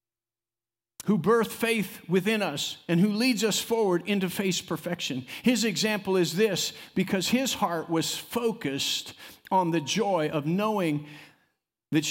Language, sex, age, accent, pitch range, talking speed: English, male, 50-69, American, 140-210 Hz, 140 wpm